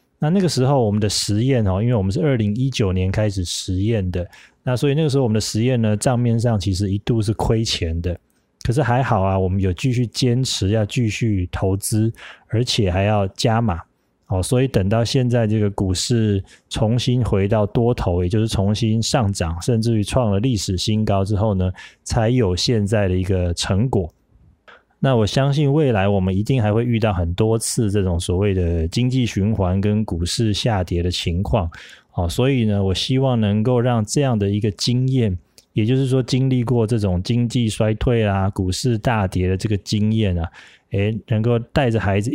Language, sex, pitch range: Chinese, male, 95-120 Hz